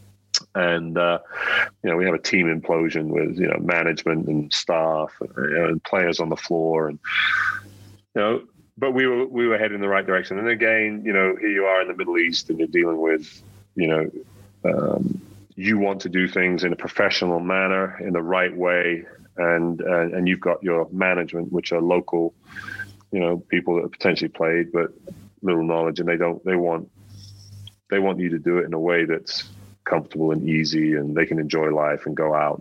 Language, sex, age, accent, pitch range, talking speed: English, male, 30-49, British, 85-95 Hz, 210 wpm